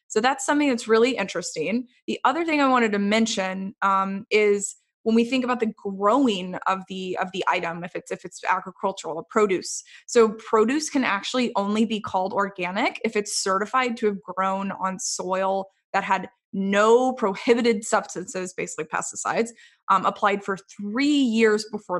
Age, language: 20-39, English